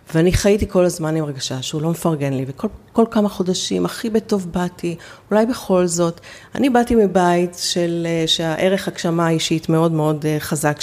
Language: Hebrew